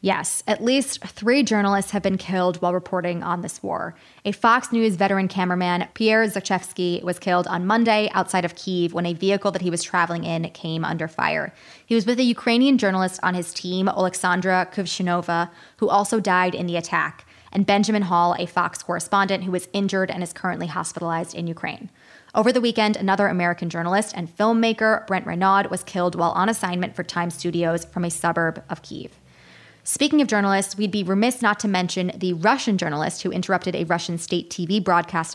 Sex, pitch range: female, 175-210 Hz